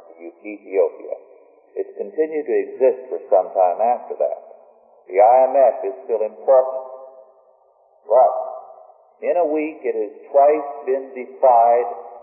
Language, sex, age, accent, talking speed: English, male, 50-69, American, 125 wpm